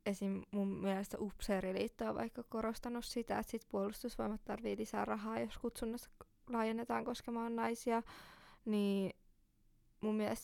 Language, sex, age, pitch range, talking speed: Finnish, female, 20-39, 195-225 Hz, 125 wpm